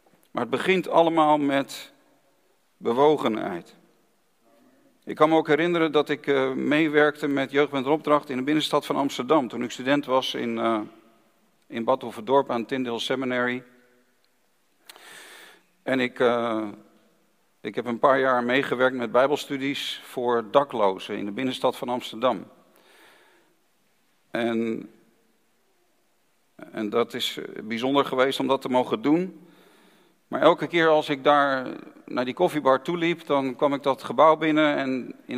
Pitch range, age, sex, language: 125-150 Hz, 50-69, male, Dutch